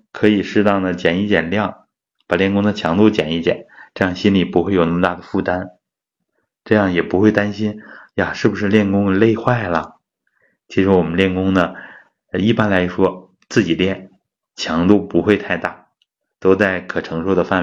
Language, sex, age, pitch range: Chinese, male, 20-39, 90-105 Hz